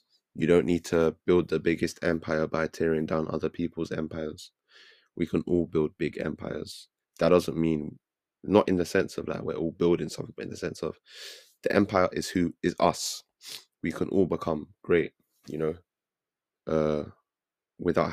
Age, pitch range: 20-39, 80-90 Hz